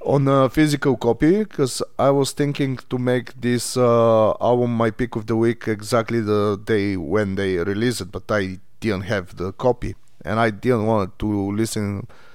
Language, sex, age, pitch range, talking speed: English, male, 30-49, 110-140 Hz, 180 wpm